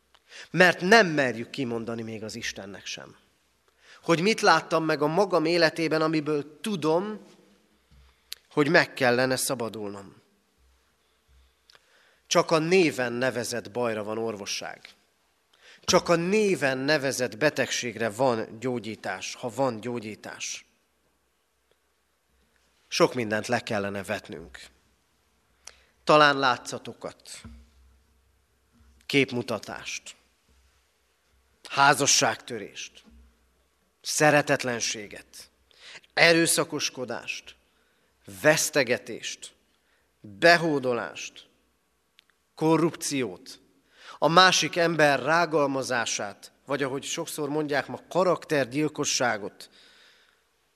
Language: Hungarian